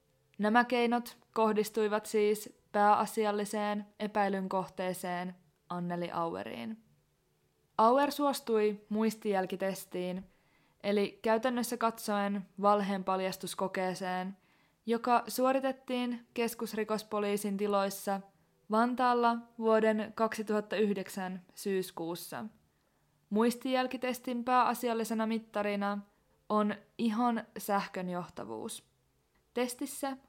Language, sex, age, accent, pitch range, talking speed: Finnish, female, 20-39, native, 195-235 Hz, 65 wpm